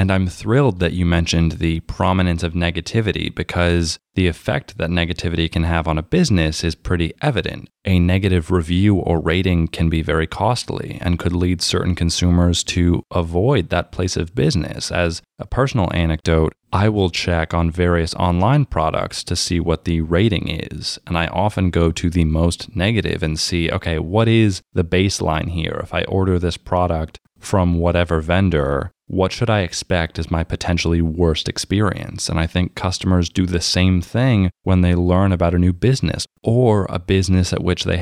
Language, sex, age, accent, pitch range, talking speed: English, male, 20-39, American, 85-95 Hz, 180 wpm